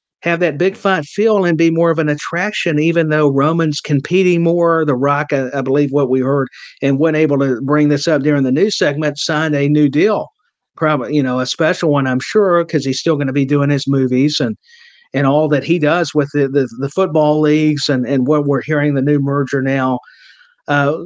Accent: American